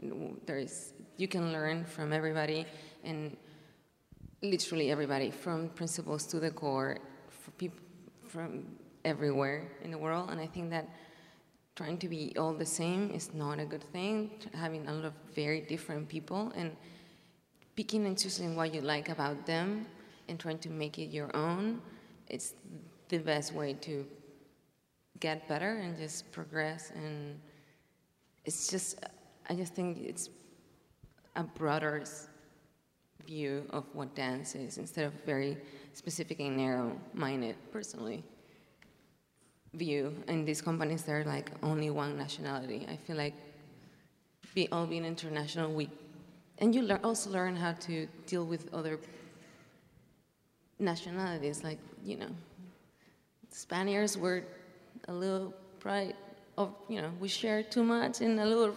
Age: 20-39